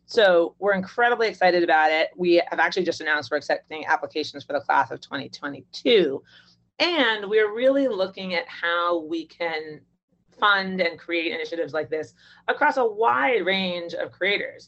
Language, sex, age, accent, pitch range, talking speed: English, female, 30-49, American, 155-200 Hz, 160 wpm